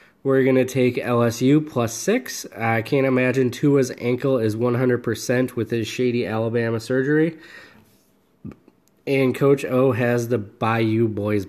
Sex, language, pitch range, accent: male, English, 110-135 Hz, American